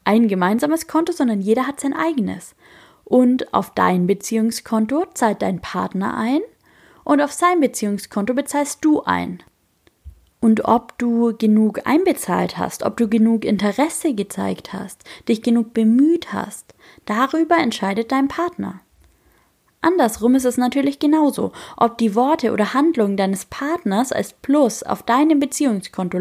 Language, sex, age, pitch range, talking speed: German, female, 20-39, 210-285 Hz, 135 wpm